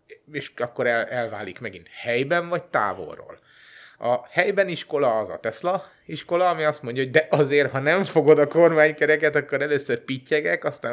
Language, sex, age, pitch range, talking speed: Hungarian, male, 30-49, 120-155 Hz, 160 wpm